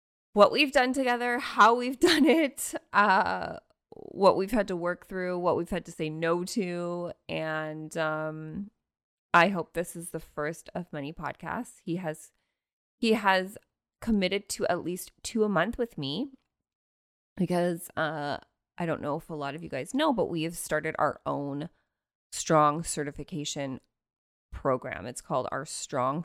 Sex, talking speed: female, 160 wpm